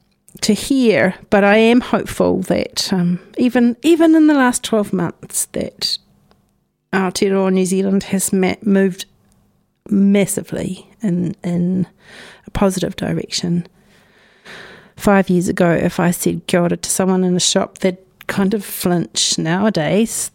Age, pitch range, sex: 40-59, 180-215 Hz, female